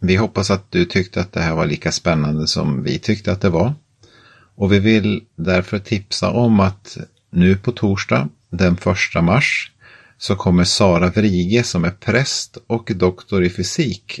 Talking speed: 175 wpm